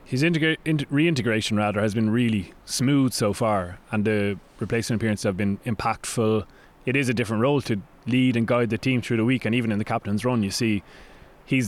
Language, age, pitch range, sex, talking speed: English, 20-39, 105-125 Hz, male, 200 wpm